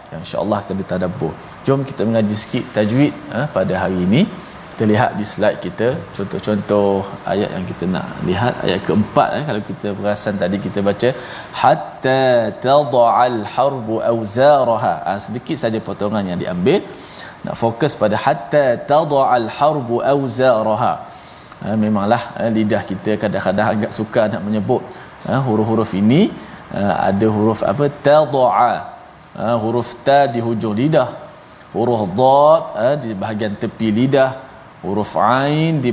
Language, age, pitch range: Malayalam, 20-39, 110-145 Hz